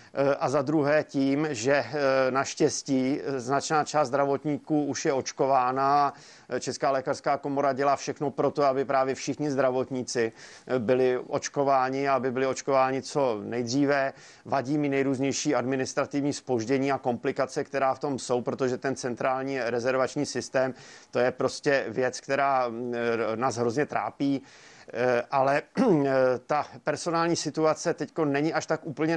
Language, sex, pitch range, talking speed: Czech, male, 130-150 Hz, 130 wpm